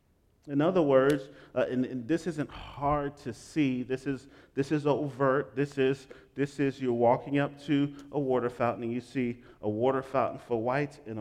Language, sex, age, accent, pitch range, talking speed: English, male, 40-59, American, 115-140 Hz, 195 wpm